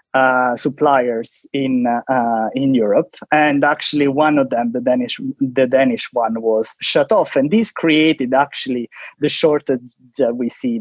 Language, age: English, 20-39